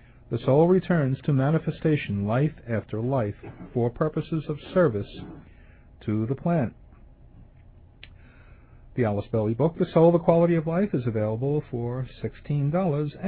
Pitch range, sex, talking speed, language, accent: 110-145 Hz, male, 130 wpm, English, American